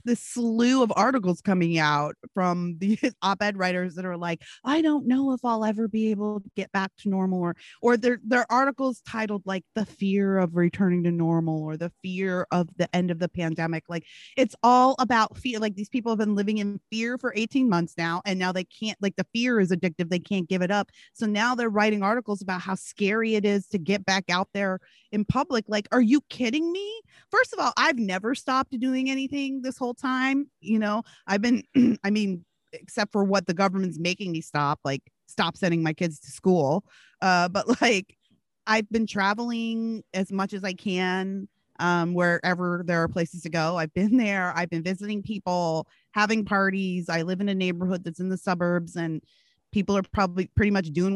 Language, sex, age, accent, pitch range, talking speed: English, female, 30-49, American, 180-225 Hz, 205 wpm